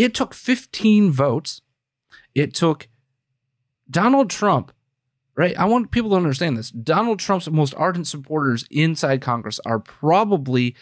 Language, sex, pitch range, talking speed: English, male, 130-185 Hz, 135 wpm